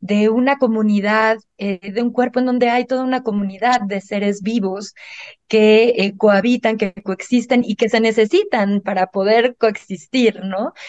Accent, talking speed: Mexican, 160 wpm